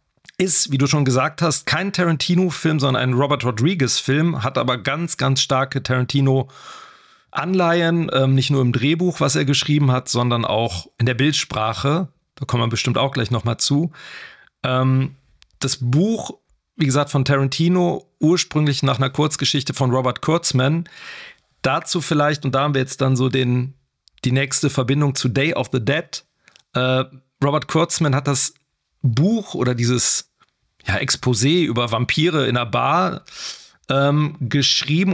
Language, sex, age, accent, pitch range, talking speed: German, male, 40-59, German, 130-155 Hz, 150 wpm